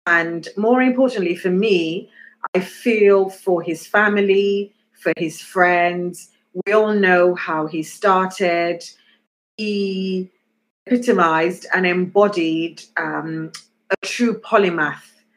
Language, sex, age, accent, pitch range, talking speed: English, female, 30-49, British, 175-220 Hz, 105 wpm